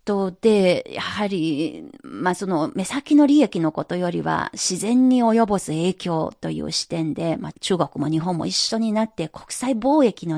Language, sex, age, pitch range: Japanese, female, 40-59, 165-240 Hz